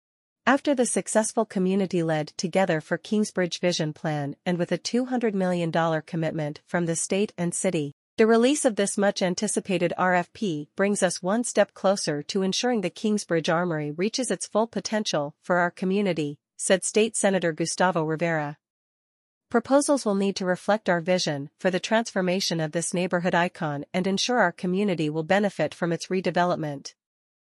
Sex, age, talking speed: female, 40-59, 155 wpm